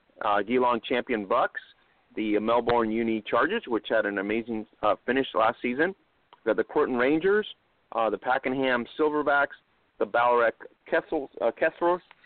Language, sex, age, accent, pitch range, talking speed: English, male, 40-59, American, 115-145 Hz, 145 wpm